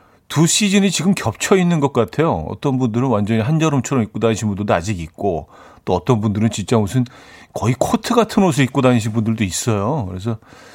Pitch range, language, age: 100-135 Hz, Korean, 40-59